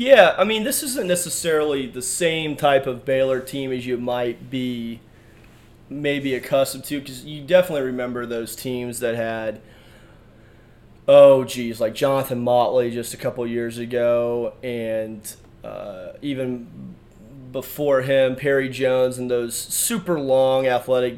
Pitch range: 120-140 Hz